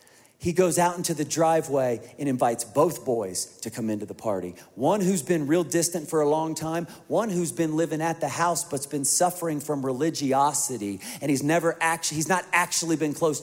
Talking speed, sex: 205 wpm, male